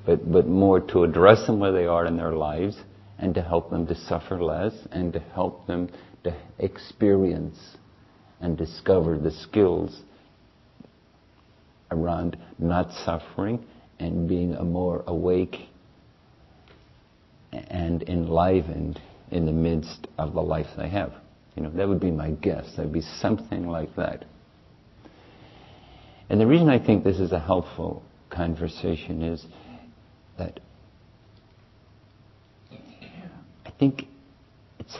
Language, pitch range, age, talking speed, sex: English, 85-110 Hz, 50-69, 130 wpm, male